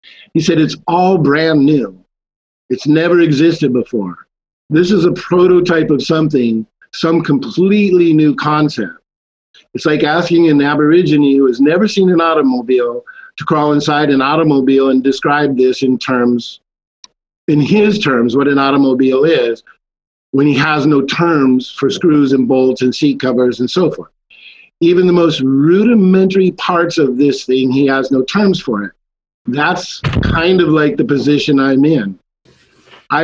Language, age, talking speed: English, 50-69, 155 wpm